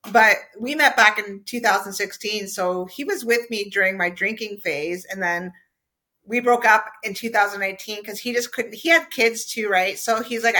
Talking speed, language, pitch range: 190 wpm, English, 195-235 Hz